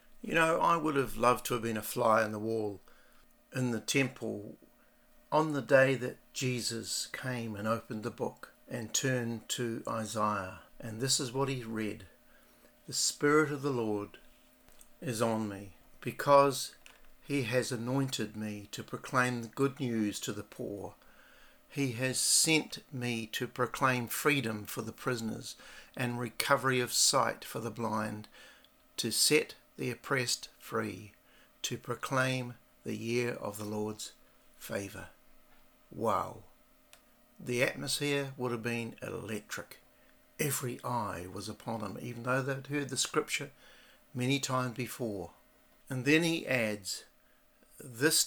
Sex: male